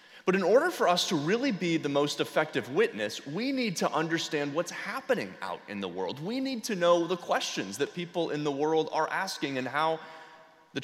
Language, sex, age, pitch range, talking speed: English, male, 30-49, 130-170 Hz, 210 wpm